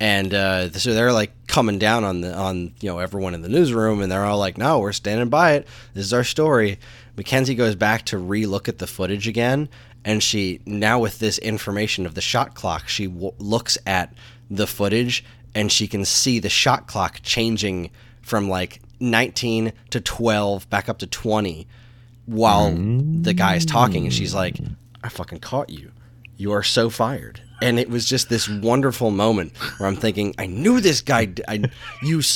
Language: English